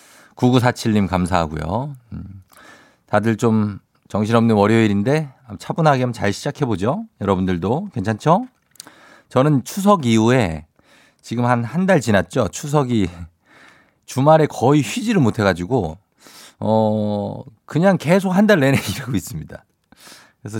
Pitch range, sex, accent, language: 100-150 Hz, male, native, Korean